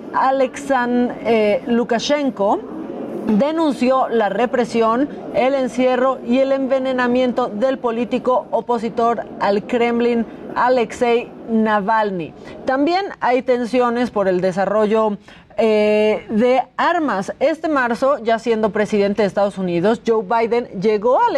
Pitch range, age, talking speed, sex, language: 215-270 Hz, 30-49, 105 wpm, female, Spanish